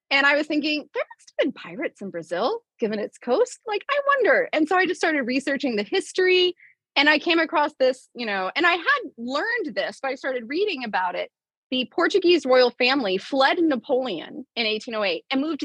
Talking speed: 205 wpm